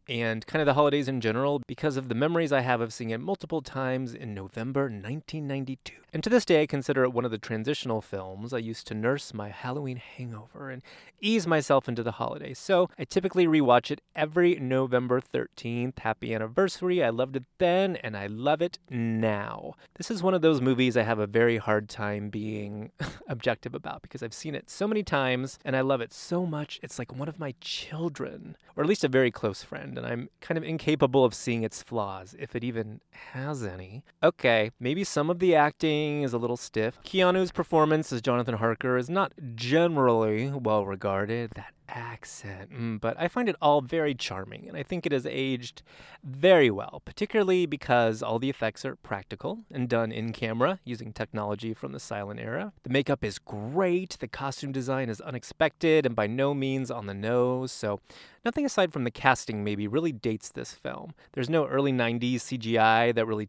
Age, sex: 30-49, male